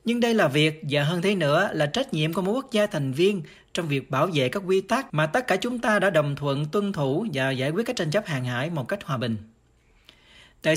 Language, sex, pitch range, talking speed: Vietnamese, male, 150-200 Hz, 260 wpm